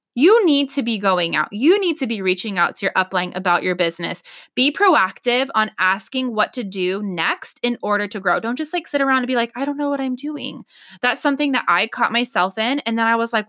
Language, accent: English, American